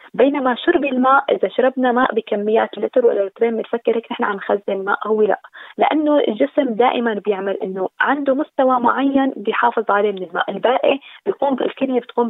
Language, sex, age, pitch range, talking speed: Arabic, female, 20-39, 210-270 Hz, 165 wpm